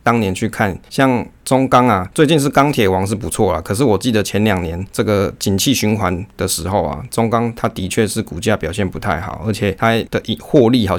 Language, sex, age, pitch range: Chinese, male, 20-39, 95-120 Hz